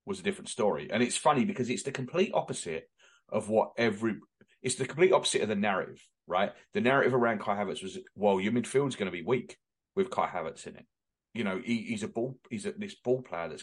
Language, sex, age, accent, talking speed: English, male, 30-49, British, 235 wpm